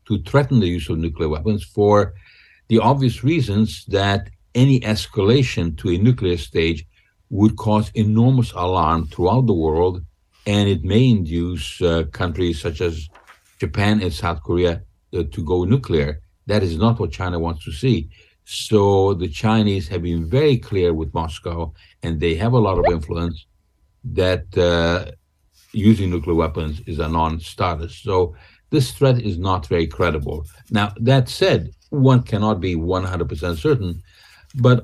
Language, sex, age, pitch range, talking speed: English, male, 60-79, 85-110 Hz, 150 wpm